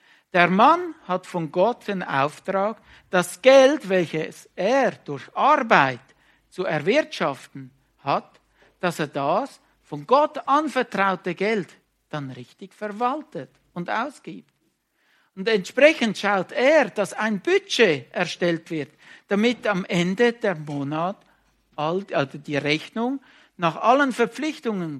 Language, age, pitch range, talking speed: English, 60-79, 155-235 Hz, 115 wpm